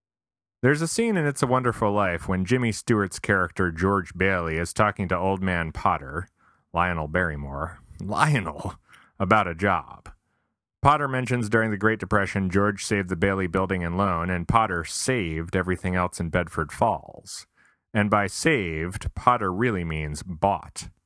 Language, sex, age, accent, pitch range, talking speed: English, male, 30-49, American, 85-105 Hz, 155 wpm